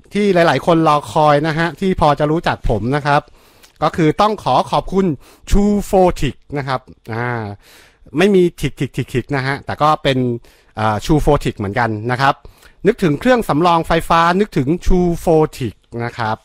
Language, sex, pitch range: Thai, male, 120-165 Hz